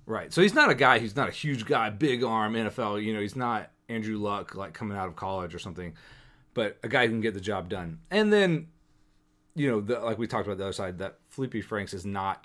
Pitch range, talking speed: 100-130 Hz, 255 wpm